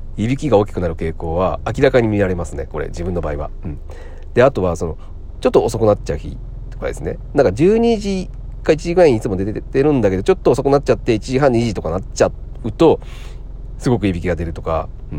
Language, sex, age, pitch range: Japanese, male, 40-59, 80-135 Hz